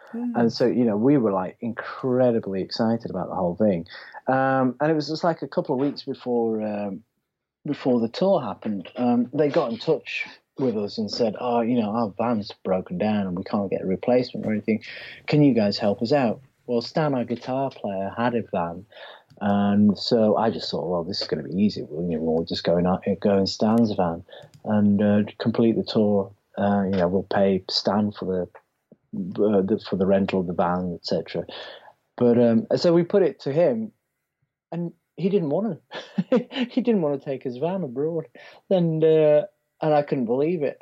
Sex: male